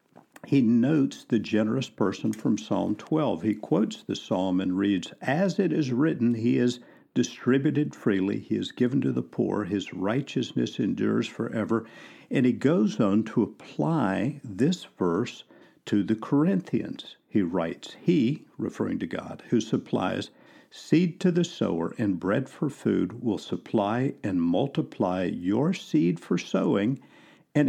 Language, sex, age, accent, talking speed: English, male, 50-69, American, 145 wpm